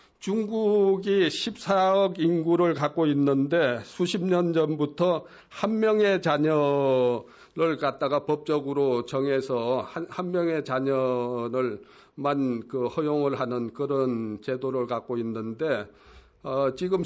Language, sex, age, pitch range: Korean, male, 50-69, 140-185 Hz